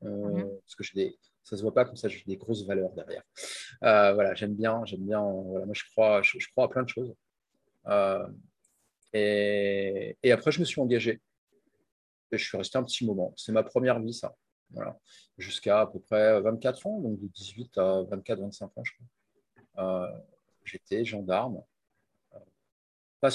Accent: French